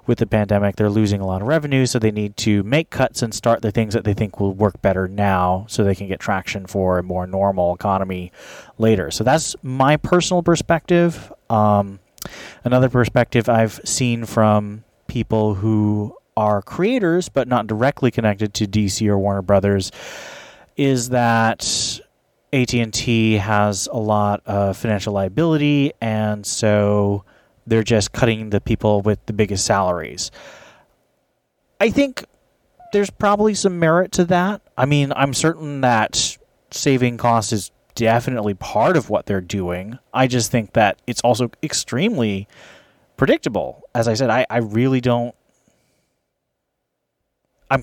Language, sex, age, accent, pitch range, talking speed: English, male, 30-49, American, 105-130 Hz, 150 wpm